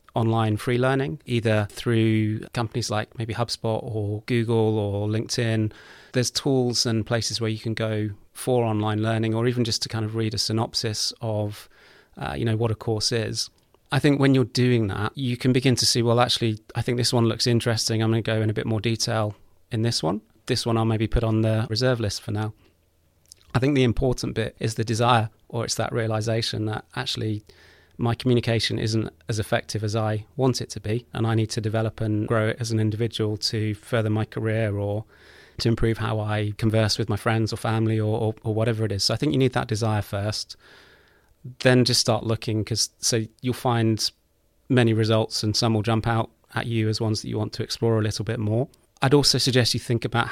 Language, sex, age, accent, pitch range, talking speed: English, male, 30-49, British, 110-120 Hz, 215 wpm